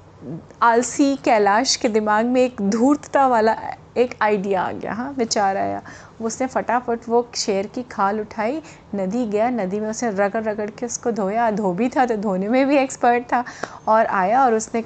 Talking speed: 180 wpm